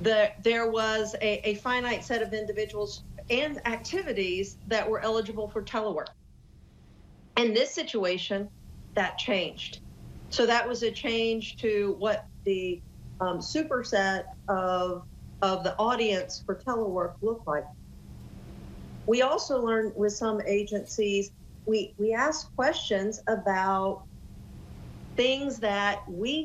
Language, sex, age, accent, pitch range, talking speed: English, female, 50-69, American, 185-220 Hz, 120 wpm